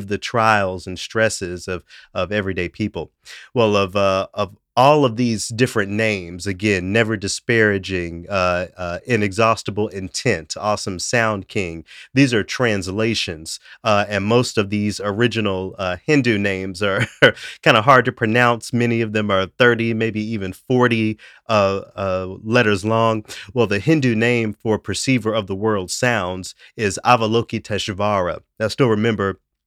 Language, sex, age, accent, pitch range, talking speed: English, male, 30-49, American, 95-115 Hz, 145 wpm